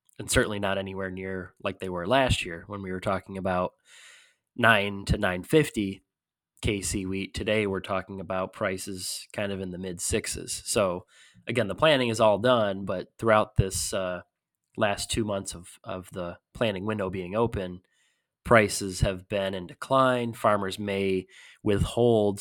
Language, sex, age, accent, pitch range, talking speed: English, male, 20-39, American, 95-110 Hz, 160 wpm